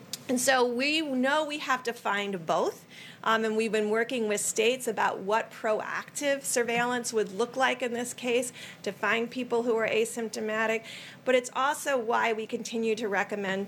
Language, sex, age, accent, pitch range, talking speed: English, female, 40-59, American, 200-245 Hz, 175 wpm